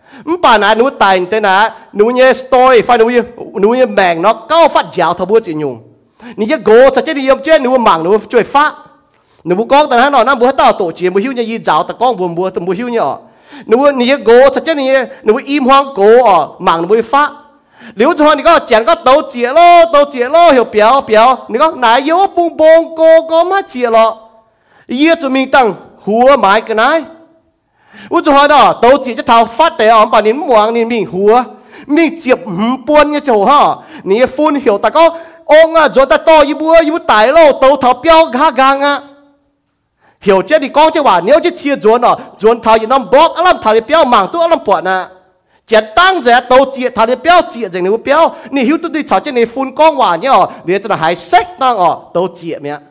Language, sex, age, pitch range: English, male, 30-49, 225-310 Hz